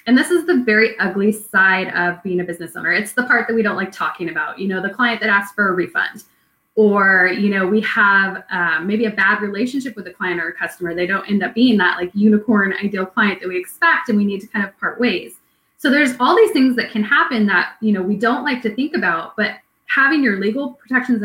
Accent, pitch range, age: American, 190-245 Hz, 20-39